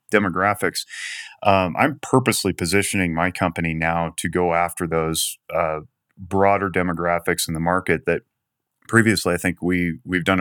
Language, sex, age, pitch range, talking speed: English, male, 30-49, 85-95 Hz, 145 wpm